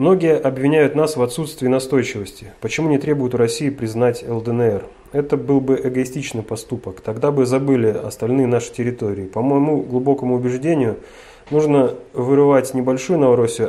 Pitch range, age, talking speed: 115-135 Hz, 30-49, 140 wpm